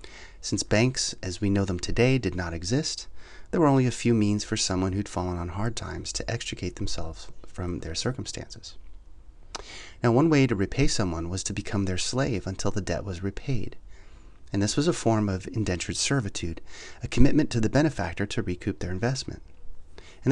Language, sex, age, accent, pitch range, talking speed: English, male, 30-49, American, 90-115 Hz, 185 wpm